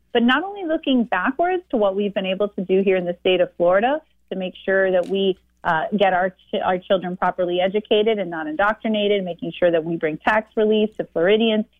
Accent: American